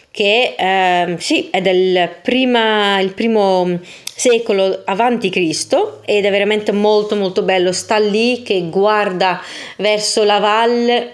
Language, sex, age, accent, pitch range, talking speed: Italian, female, 20-39, native, 180-215 Hz, 130 wpm